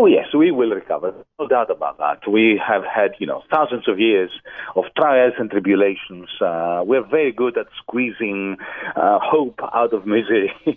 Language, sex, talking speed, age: English, male, 180 wpm, 40-59